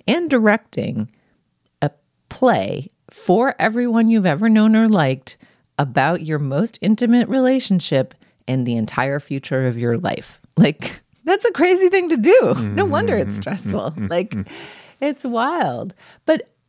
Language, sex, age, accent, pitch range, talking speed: English, female, 30-49, American, 110-190 Hz, 140 wpm